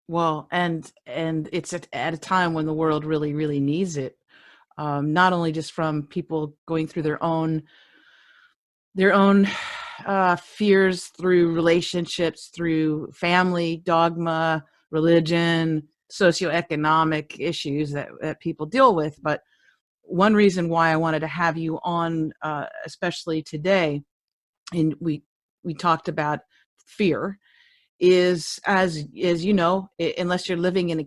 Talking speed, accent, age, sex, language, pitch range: 135 wpm, American, 40-59, female, English, 160-205 Hz